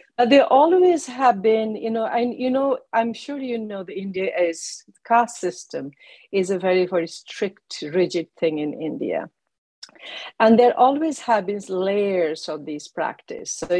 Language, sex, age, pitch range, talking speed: English, female, 50-69, 165-225 Hz, 155 wpm